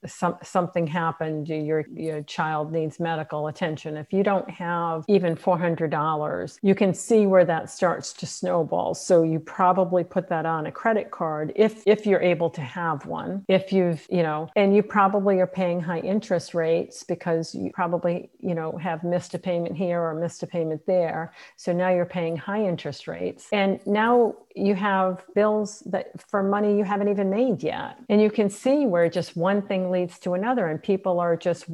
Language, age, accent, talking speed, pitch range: English, 50-69, American, 195 wpm, 170-200 Hz